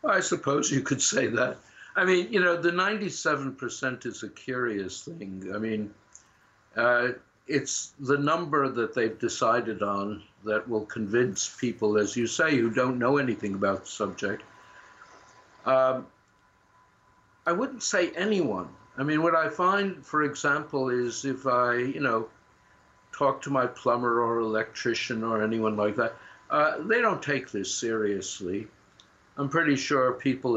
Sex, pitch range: male, 110-140 Hz